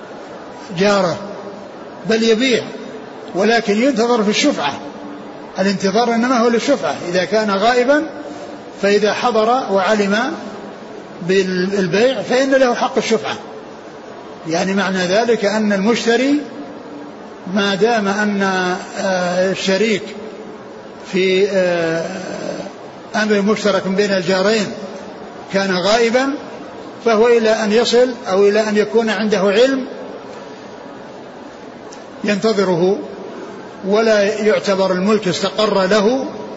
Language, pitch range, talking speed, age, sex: Arabic, 190-225 Hz, 90 wpm, 60-79, male